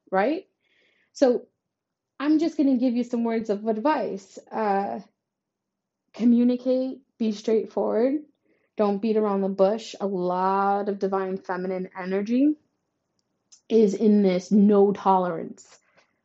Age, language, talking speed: 20-39, English, 120 wpm